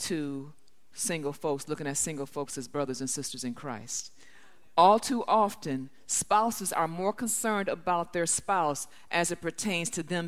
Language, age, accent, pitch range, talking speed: English, 50-69, American, 195-250 Hz, 165 wpm